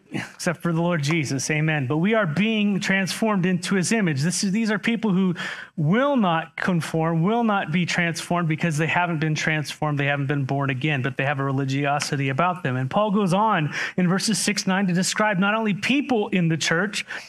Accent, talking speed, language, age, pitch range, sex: American, 210 wpm, English, 30-49, 170-215 Hz, male